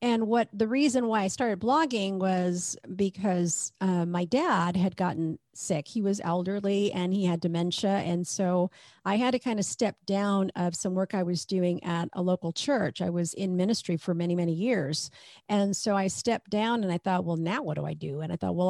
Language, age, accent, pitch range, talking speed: English, 50-69, American, 180-235 Hz, 220 wpm